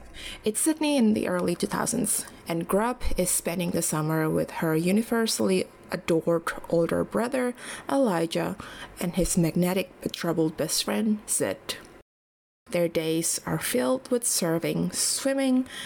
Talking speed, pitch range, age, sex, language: 130 wpm, 175-225 Hz, 20-39, female, English